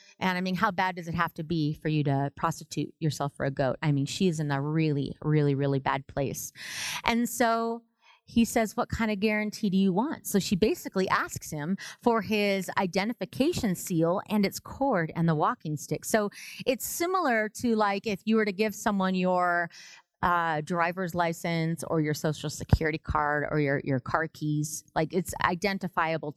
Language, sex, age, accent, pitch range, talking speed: English, female, 30-49, American, 160-220 Hz, 190 wpm